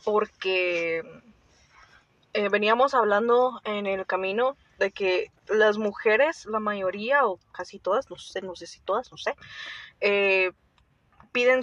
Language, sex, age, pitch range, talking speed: Spanish, female, 20-39, 200-255 Hz, 135 wpm